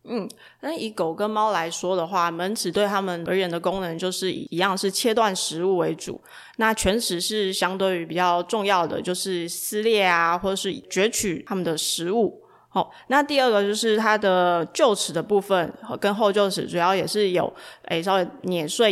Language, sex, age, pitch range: Chinese, female, 20-39, 175-210 Hz